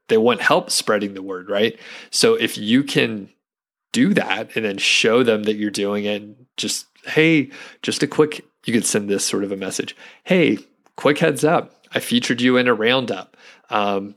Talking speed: 190 wpm